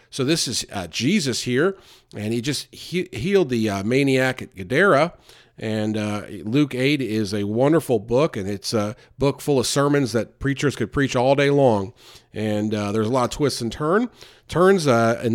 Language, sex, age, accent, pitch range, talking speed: English, male, 40-59, American, 115-165 Hz, 190 wpm